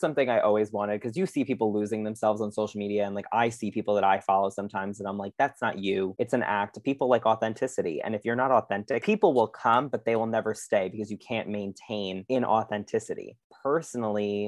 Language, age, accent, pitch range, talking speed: English, 20-39, American, 105-120 Hz, 220 wpm